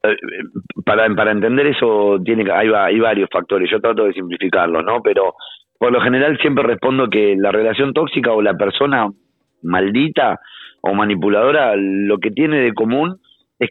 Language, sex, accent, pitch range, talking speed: Spanish, male, Argentinian, 105-135 Hz, 160 wpm